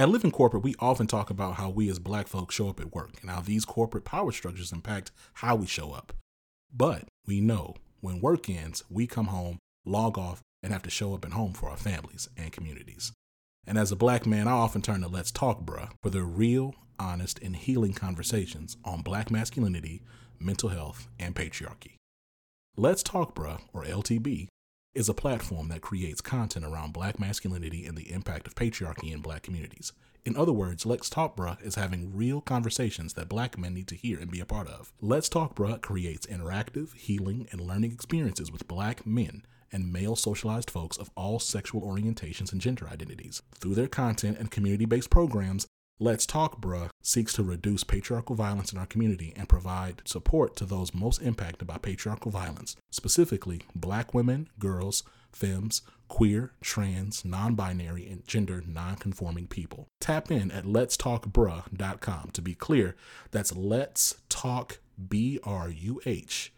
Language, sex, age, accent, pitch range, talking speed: English, male, 30-49, American, 90-115 Hz, 175 wpm